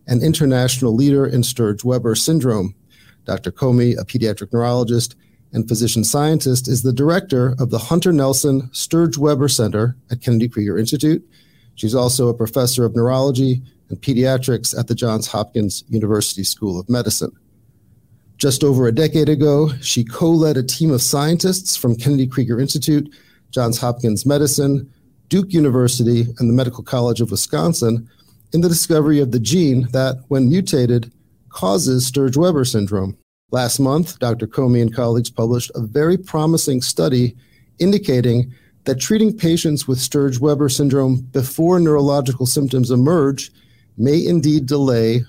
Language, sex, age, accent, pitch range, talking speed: English, male, 50-69, American, 120-145 Hz, 140 wpm